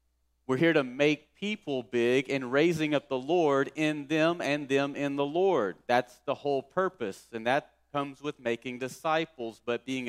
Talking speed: 180 wpm